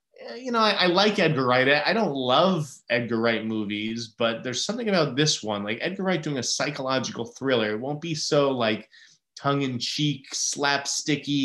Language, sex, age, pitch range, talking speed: English, male, 20-39, 110-145 Hz, 175 wpm